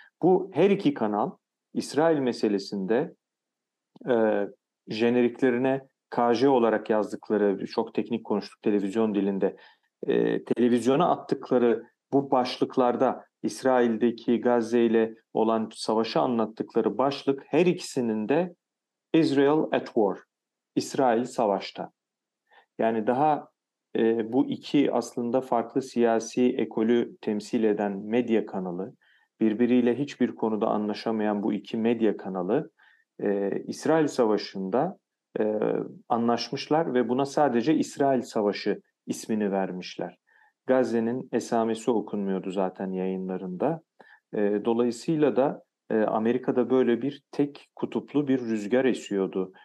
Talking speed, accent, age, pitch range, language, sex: 100 wpm, native, 40-59, 105-130 Hz, Turkish, male